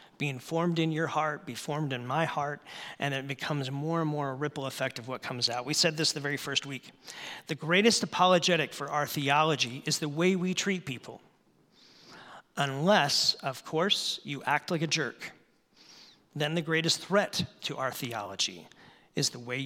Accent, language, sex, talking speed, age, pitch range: American, English, male, 185 wpm, 40-59, 135-160 Hz